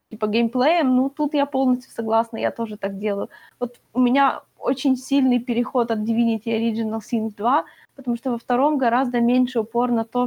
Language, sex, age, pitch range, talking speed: Ukrainian, female, 20-39, 230-295 Hz, 185 wpm